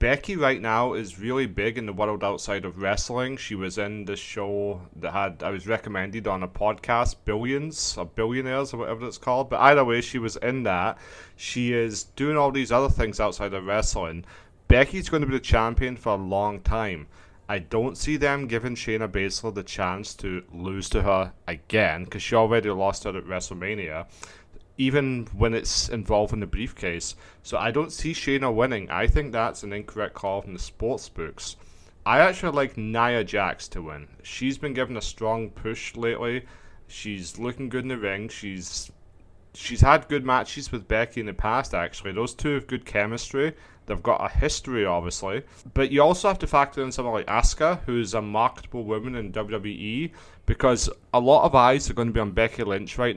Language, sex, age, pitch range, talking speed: English, male, 30-49, 95-120 Hz, 195 wpm